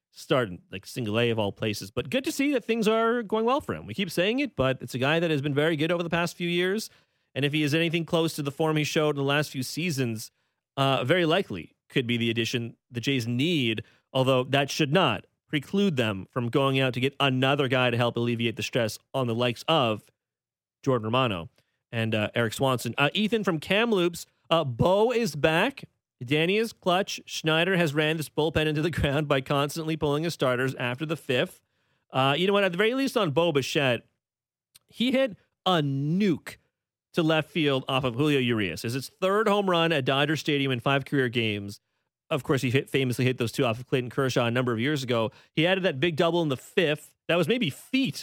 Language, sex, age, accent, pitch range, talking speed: English, male, 30-49, American, 125-170 Hz, 225 wpm